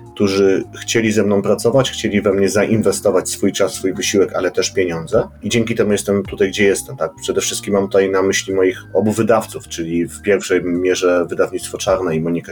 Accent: native